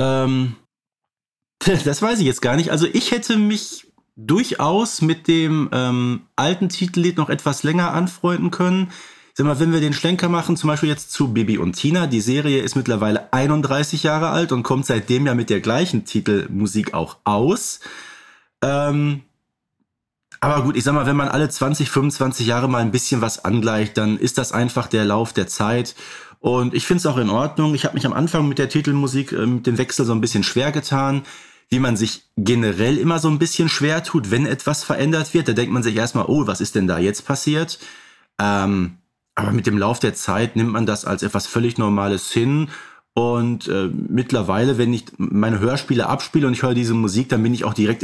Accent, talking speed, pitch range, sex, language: German, 200 wpm, 115-150 Hz, male, German